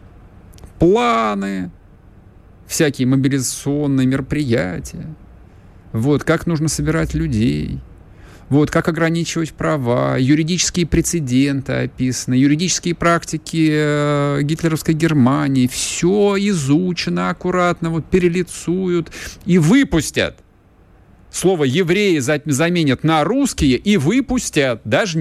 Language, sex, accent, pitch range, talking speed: Russian, male, native, 95-155 Hz, 85 wpm